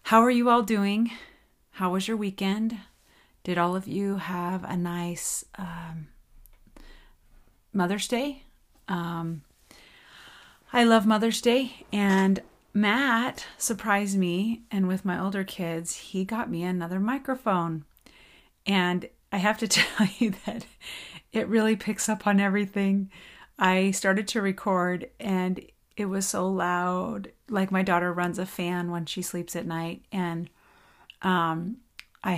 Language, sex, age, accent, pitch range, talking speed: English, female, 30-49, American, 175-215 Hz, 135 wpm